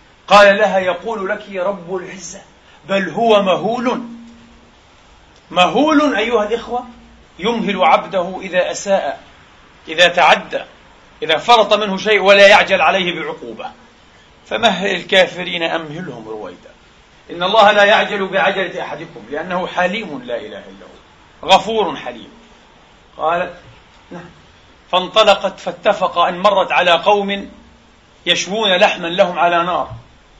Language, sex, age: Arabic, male, 40-59